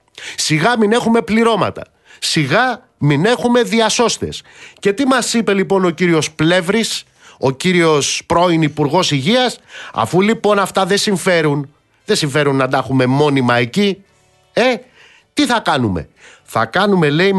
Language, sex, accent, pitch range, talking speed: Greek, male, native, 140-205 Hz, 140 wpm